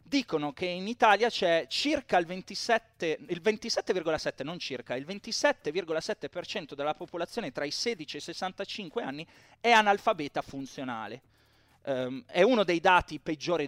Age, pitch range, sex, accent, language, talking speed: 30-49, 135-185 Hz, male, native, Italian, 140 wpm